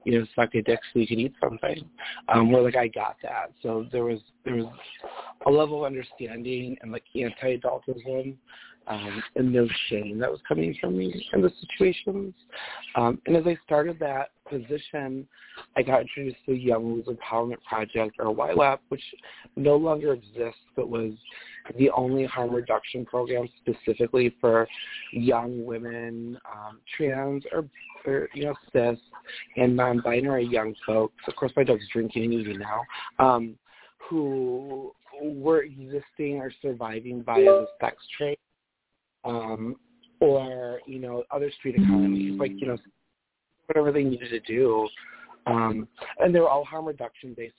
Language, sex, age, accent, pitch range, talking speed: English, male, 30-49, American, 115-135 Hz, 155 wpm